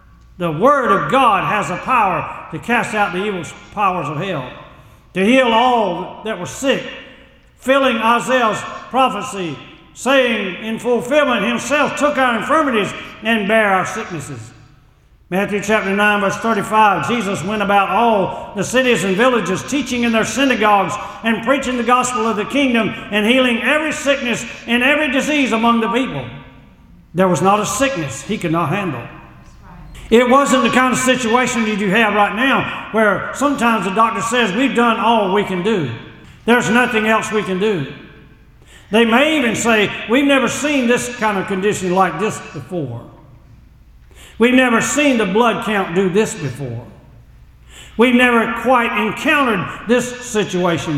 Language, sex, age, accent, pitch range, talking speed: English, male, 60-79, American, 195-250 Hz, 160 wpm